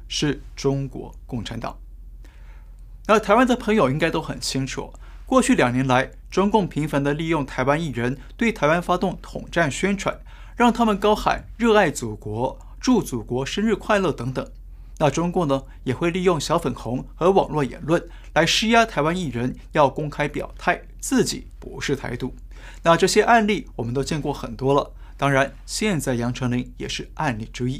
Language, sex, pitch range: Chinese, male, 130-205 Hz